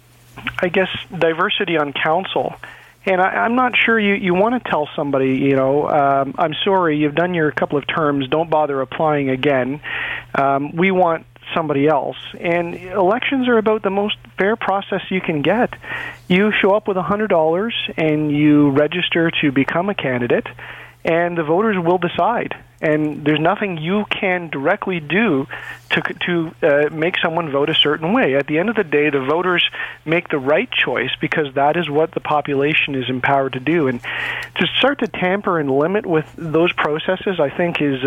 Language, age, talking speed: English, 40-59, 180 wpm